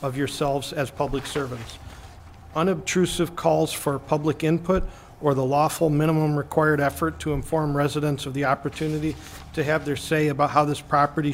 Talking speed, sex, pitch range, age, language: 160 wpm, male, 140-155 Hz, 50-69, English